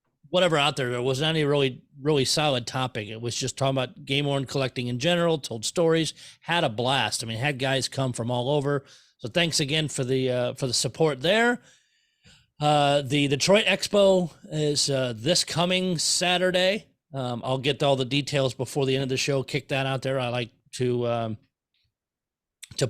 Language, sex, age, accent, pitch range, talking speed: English, male, 40-59, American, 130-165 Hz, 195 wpm